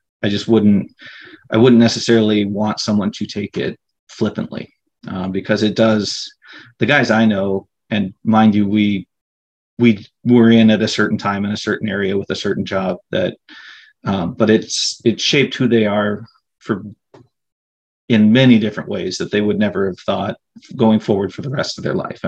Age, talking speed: 30-49, 180 wpm